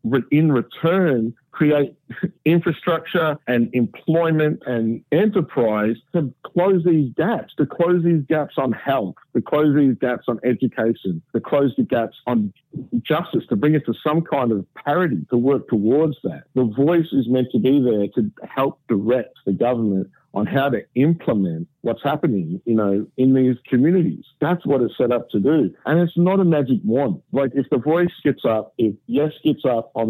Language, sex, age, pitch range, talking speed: English, male, 50-69, 120-160 Hz, 175 wpm